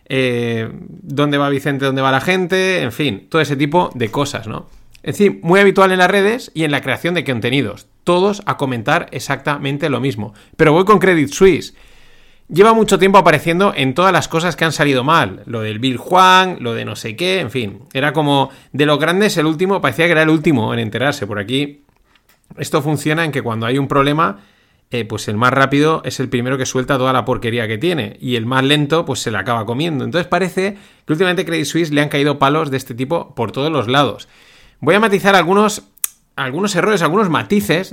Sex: male